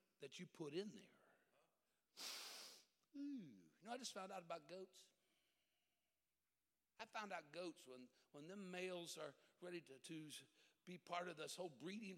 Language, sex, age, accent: English, male, 60-79, American